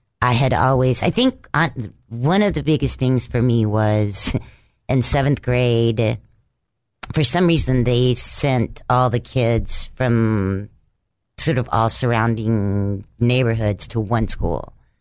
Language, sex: English, female